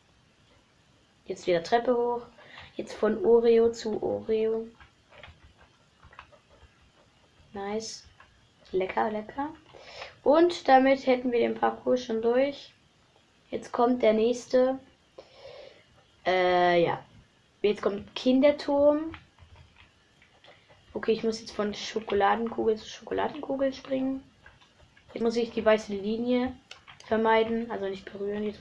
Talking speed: 105 wpm